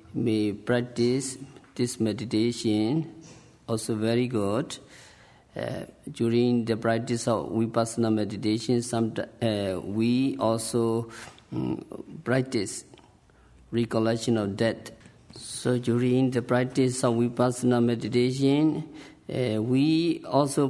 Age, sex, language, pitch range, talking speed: 50-69, male, English, 110-125 Hz, 95 wpm